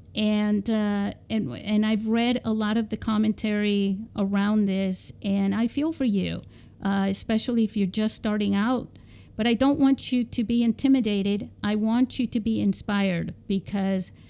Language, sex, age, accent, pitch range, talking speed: English, female, 50-69, American, 195-230 Hz, 170 wpm